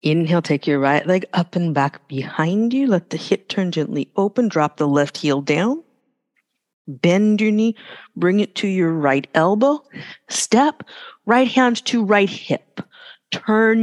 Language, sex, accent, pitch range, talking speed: English, female, American, 165-230 Hz, 160 wpm